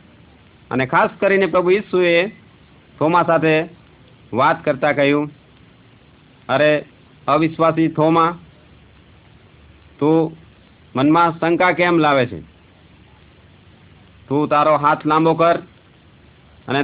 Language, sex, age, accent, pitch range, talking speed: Gujarati, male, 50-69, native, 115-160 Hz, 85 wpm